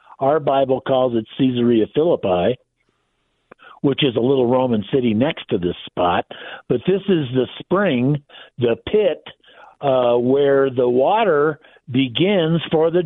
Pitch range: 135-180 Hz